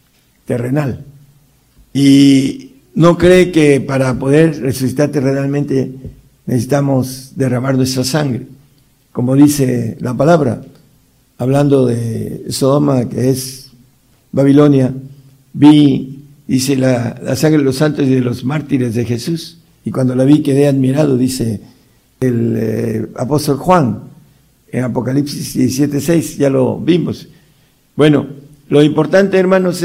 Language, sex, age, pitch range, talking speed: Italian, male, 60-79, 130-155 Hz, 120 wpm